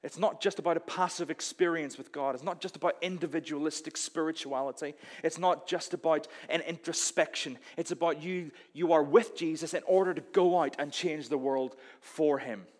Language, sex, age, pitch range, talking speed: English, male, 30-49, 145-180 Hz, 185 wpm